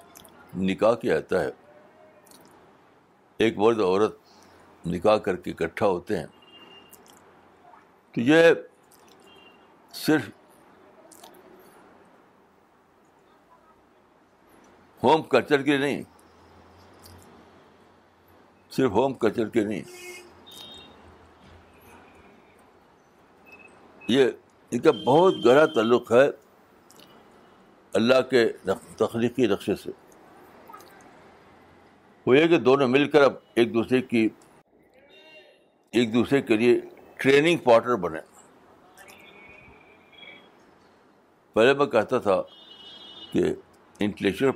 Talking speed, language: 80 wpm, Urdu